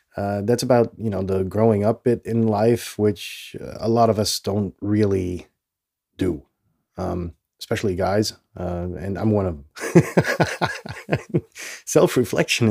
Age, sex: 20-39, male